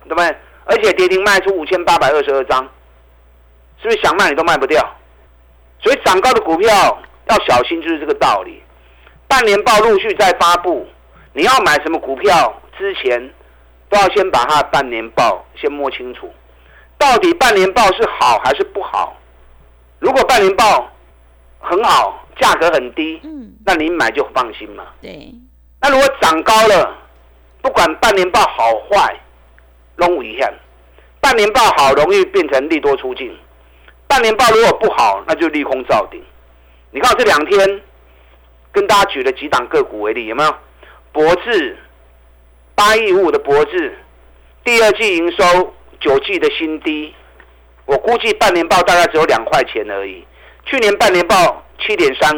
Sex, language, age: male, Chinese, 50-69